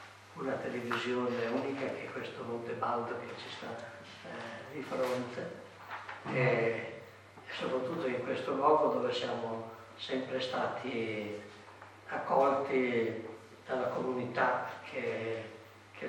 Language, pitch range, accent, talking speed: Italian, 110-135 Hz, native, 105 wpm